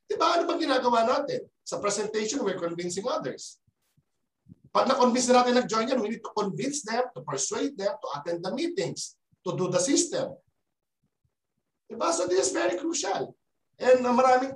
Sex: male